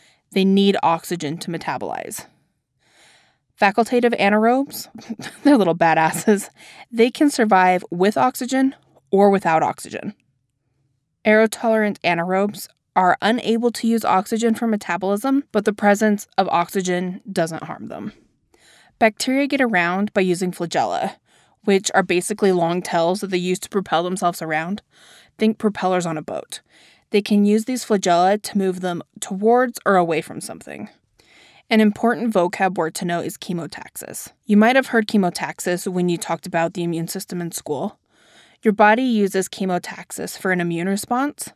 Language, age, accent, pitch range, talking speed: English, 20-39, American, 175-220 Hz, 145 wpm